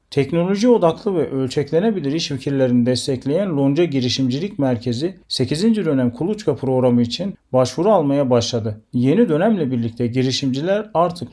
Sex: male